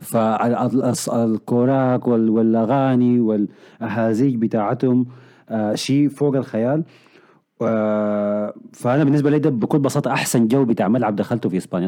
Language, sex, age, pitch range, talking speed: Arabic, male, 30-49, 115-160 Hz, 115 wpm